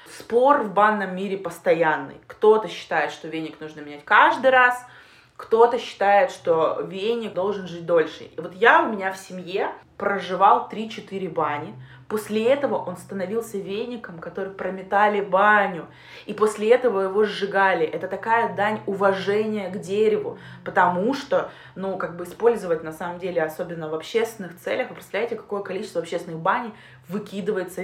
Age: 20-39